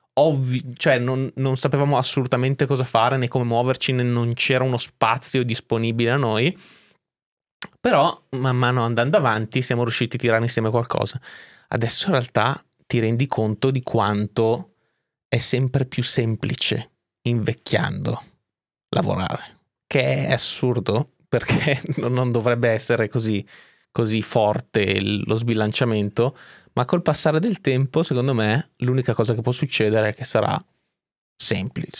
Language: Italian